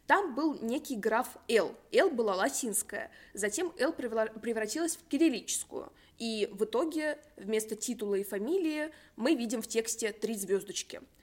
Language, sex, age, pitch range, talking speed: Russian, female, 20-39, 205-260 Hz, 145 wpm